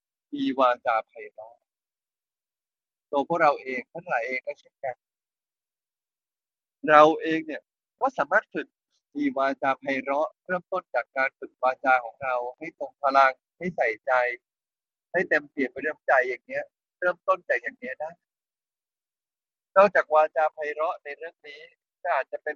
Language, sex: Thai, male